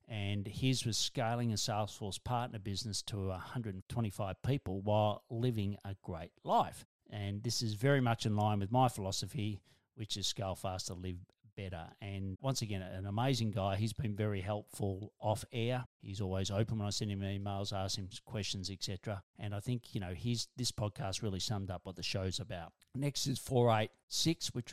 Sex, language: male, English